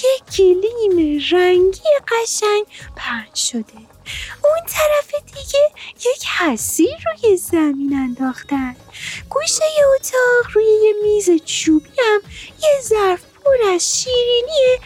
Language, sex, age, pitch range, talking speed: Persian, female, 30-49, 290-420 Hz, 95 wpm